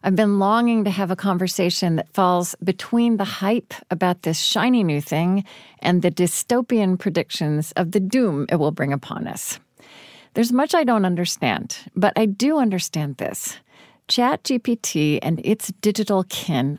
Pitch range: 165-220 Hz